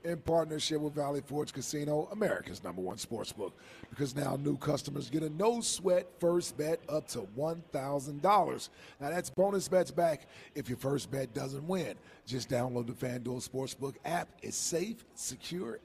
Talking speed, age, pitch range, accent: 160 wpm, 40-59, 145-175 Hz, American